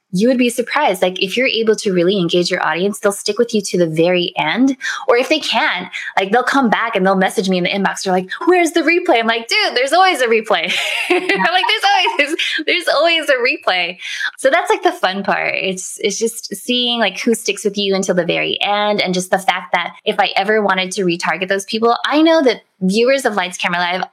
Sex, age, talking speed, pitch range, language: female, 20-39, 240 wpm, 190-290 Hz, English